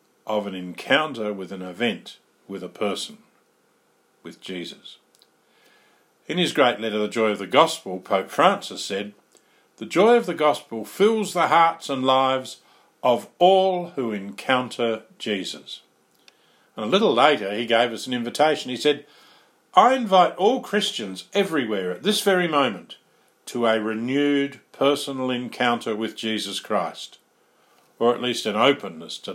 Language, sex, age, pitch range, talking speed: English, male, 50-69, 100-145 Hz, 145 wpm